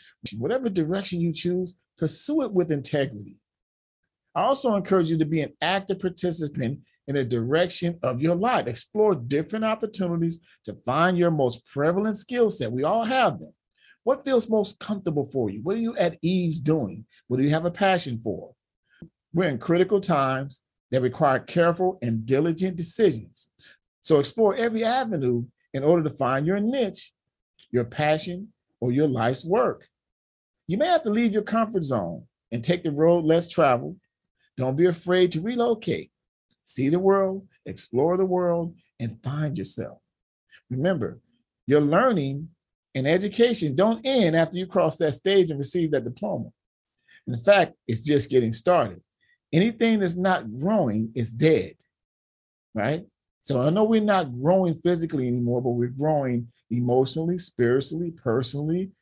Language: English